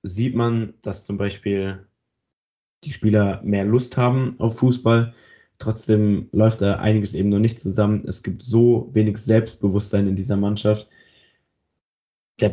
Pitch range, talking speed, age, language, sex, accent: 100-115 Hz, 140 wpm, 10-29, German, male, German